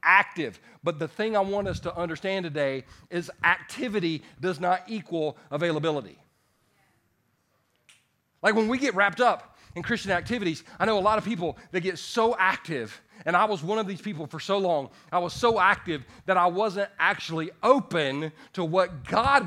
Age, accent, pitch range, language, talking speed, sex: 40-59, American, 150-205 Hz, English, 175 wpm, male